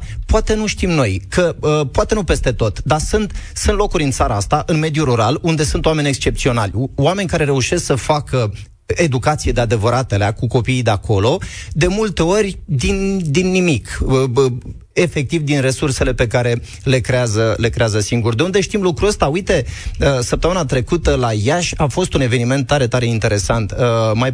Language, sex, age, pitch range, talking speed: Romanian, male, 30-49, 115-155 Hz, 175 wpm